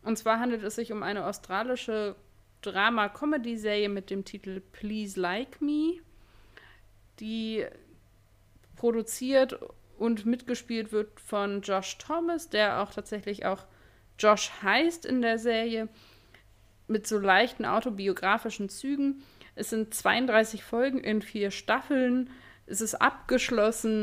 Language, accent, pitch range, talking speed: German, German, 180-230 Hz, 115 wpm